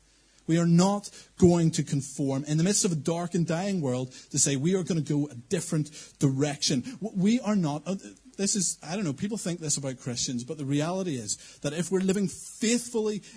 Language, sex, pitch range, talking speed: English, male, 145-195 Hz, 210 wpm